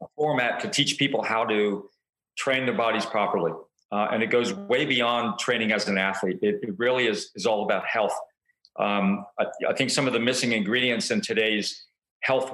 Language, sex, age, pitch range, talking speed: English, male, 40-59, 105-140 Hz, 195 wpm